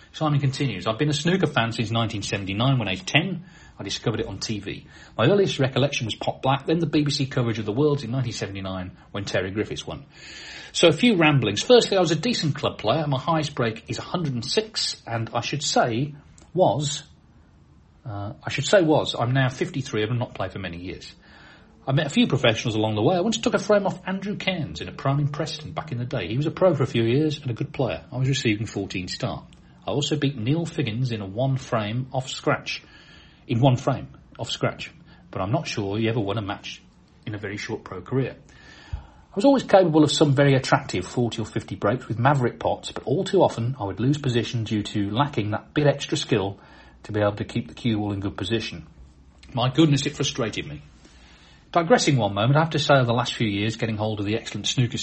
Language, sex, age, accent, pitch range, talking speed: English, male, 40-59, British, 110-145 Hz, 230 wpm